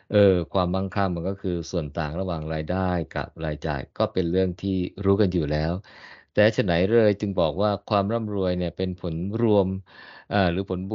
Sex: male